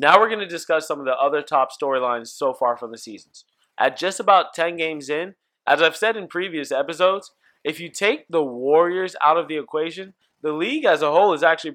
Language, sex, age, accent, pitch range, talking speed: English, male, 20-39, American, 125-165 Hz, 225 wpm